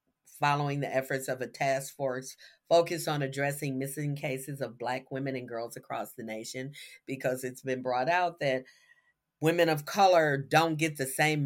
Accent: American